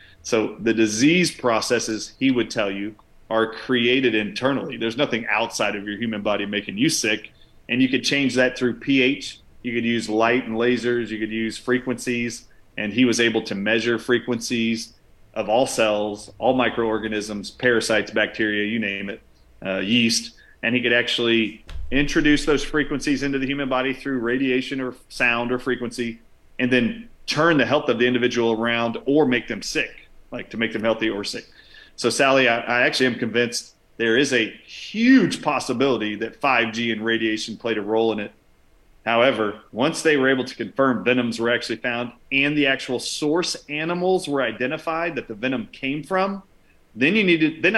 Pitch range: 115-135 Hz